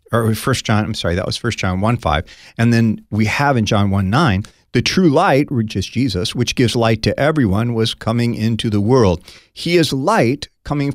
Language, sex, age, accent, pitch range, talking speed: English, male, 40-59, American, 100-130 Hz, 215 wpm